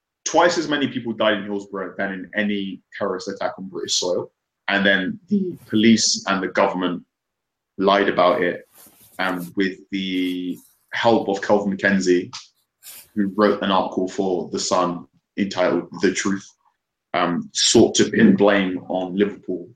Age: 20-39